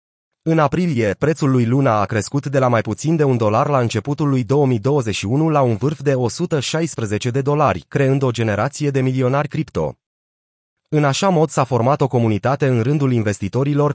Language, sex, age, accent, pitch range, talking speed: Romanian, male, 30-49, native, 115-145 Hz, 175 wpm